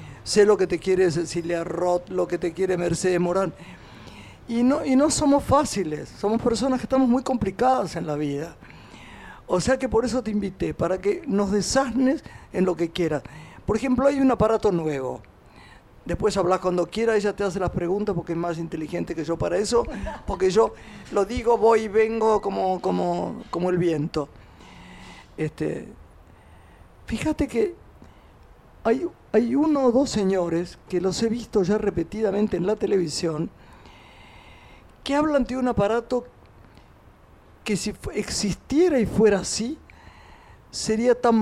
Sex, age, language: male, 50-69, Spanish